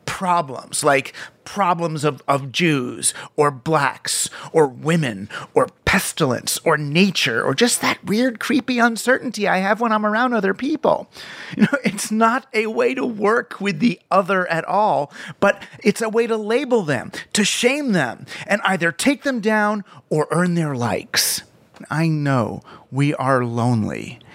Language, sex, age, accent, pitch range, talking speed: English, male, 30-49, American, 155-215 Hz, 160 wpm